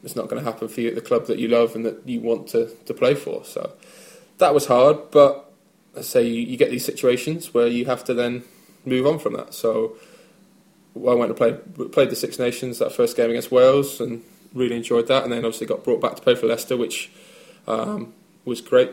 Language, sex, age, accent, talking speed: English, male, 20-39, British, 235 wpm